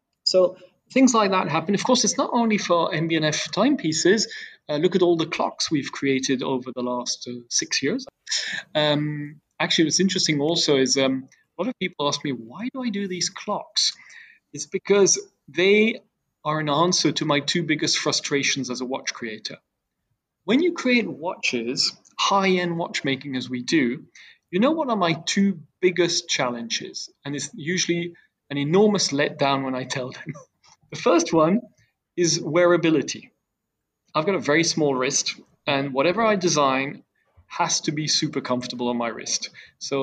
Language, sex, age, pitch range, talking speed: English, male, 30-49, 140-185 Hz, 170 wpm